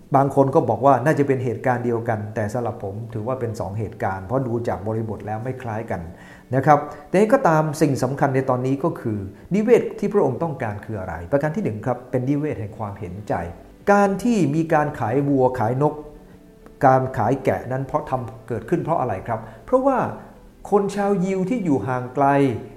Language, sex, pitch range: English, male, 125-175 Hz